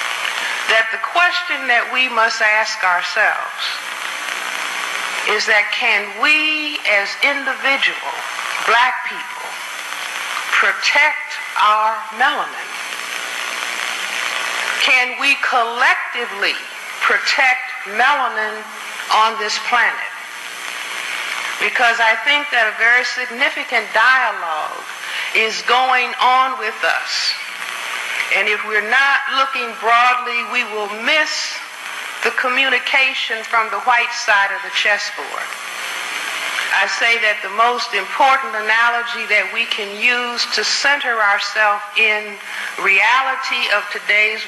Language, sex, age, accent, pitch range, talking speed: English, female, 60-79, American, 205-250 Hz, 105 wpm